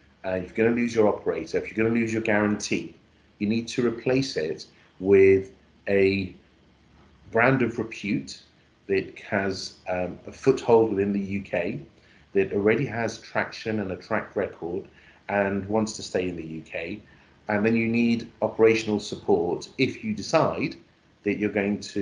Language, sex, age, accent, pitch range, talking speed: English, male, 40-59, British, 95-110 Hz, 165 wpm